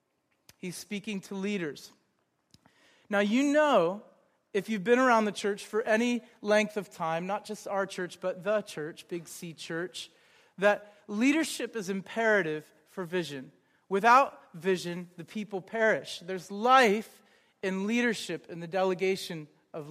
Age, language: 40-59, English